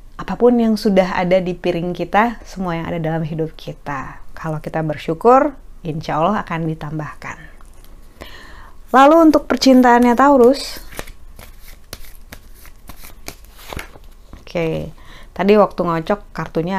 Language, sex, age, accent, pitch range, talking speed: Indonesian, female, 30-49, native, 165-225 Hz, 105 wpm